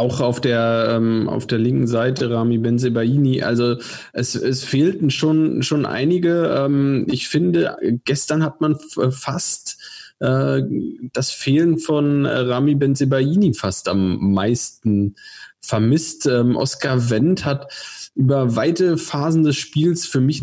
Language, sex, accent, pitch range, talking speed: German, male, German, 115-140 Hz, 135 wpm